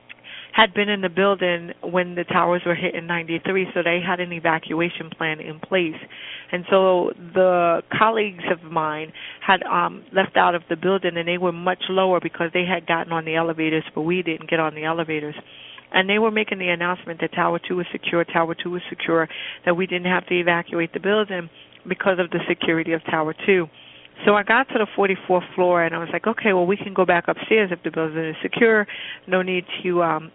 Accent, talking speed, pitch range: American, 215 wpm, 160-185 Hz